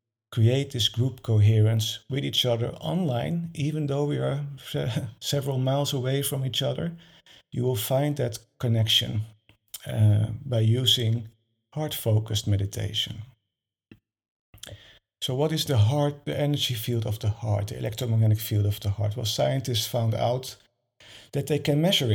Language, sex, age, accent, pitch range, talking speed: English, male, 50-69, Dutch, 110-135 Hz, 145 wpm